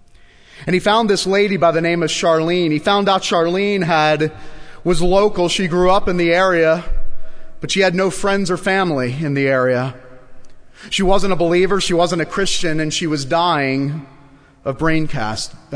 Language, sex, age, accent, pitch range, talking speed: English, male, 30-49, American, 135-195 Hz, 185 wpm